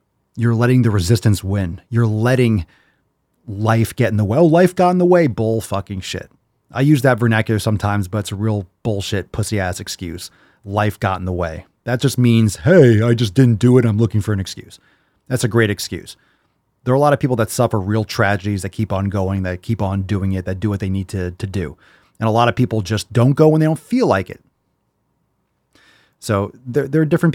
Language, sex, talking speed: English, male, 225 wpm